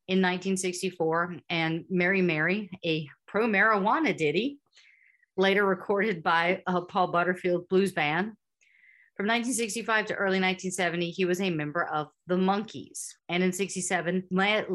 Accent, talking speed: American, 125 wpm